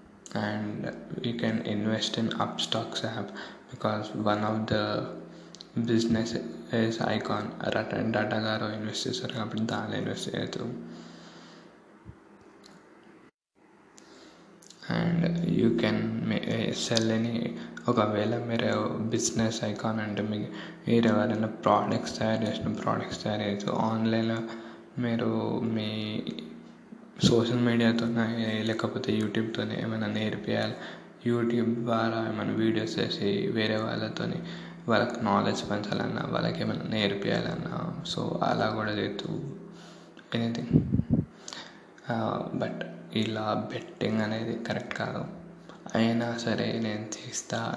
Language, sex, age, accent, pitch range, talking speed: Telugu, male, 20-39, native, 110-120 Hz, 95 wpm